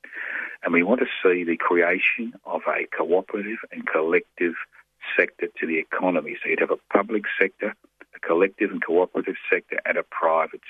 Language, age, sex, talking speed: English, 50-69, male, 170 wpm